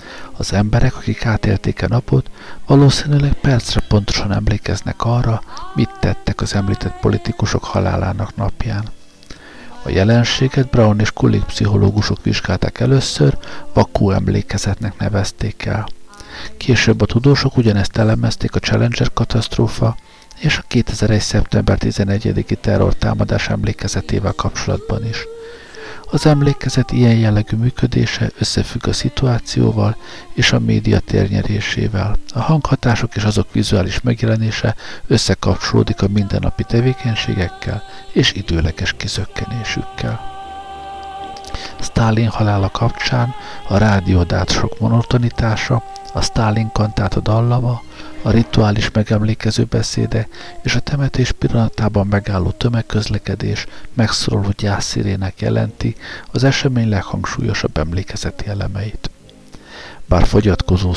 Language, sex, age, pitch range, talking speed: Hungarian, male, 60-79, 100-115 Hz, 100 wpm